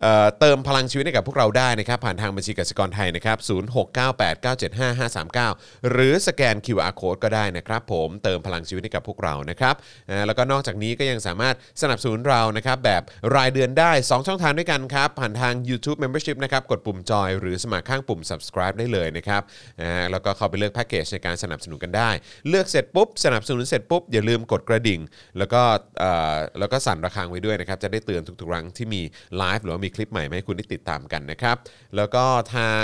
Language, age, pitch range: Thai, 20-39, 95-125 Hz